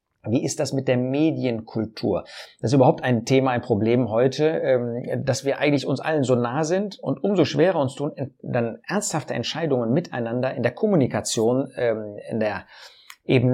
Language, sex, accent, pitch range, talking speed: German, male, German, 120-155 Hz, 165 wpm